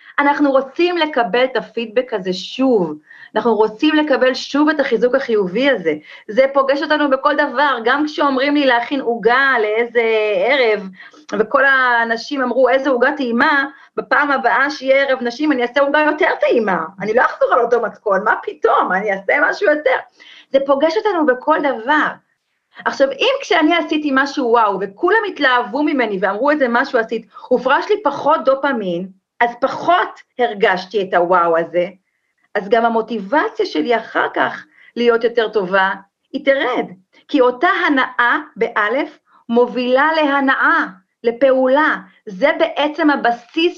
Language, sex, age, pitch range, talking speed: Hebrew, female, 30-49, 230-300 Hz, 145 wpm